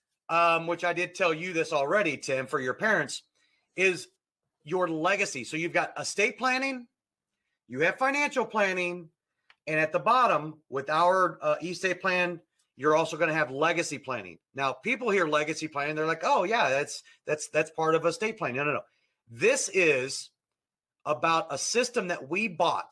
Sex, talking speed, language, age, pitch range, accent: male, 175 wpm, English, 40-59, 155-205 Hz, American